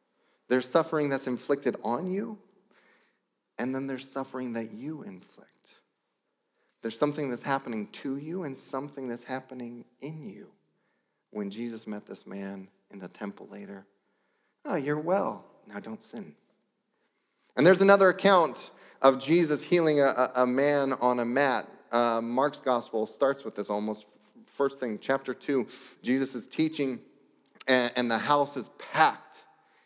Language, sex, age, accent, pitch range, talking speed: English, male, 40-59, American, 125-190 Hz, 145 wpm